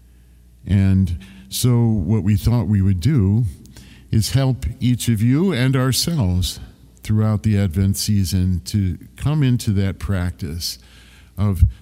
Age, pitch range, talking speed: 50-69, 90-115 Hz, 125 wpm